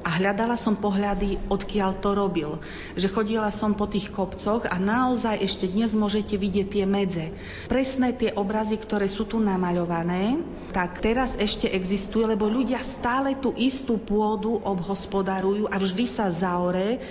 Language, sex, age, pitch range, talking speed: Slovak, female, 40-59, 185-210 Hz, 150 wpm